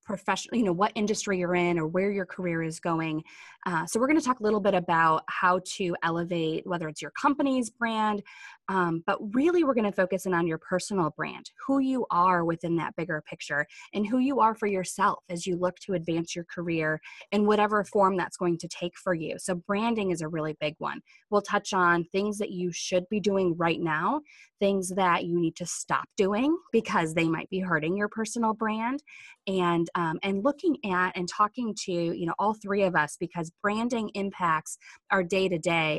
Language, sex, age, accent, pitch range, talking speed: English, female, 20-39, American, 170-210 Hz, 205 wpm